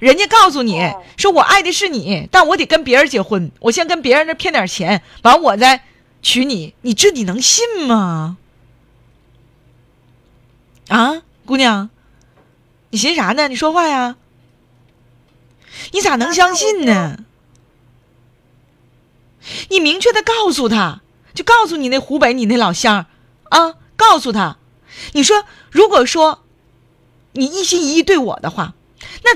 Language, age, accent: Chinese, 30-49, native